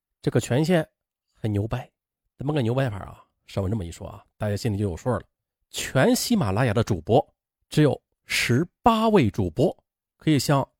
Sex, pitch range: male, 100-160 Hz